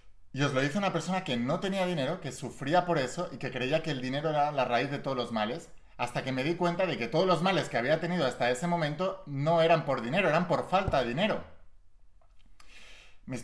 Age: 30-49